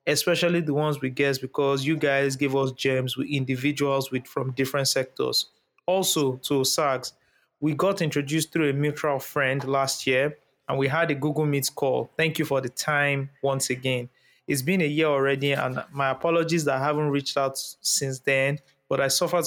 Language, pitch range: English, 130-150 Hz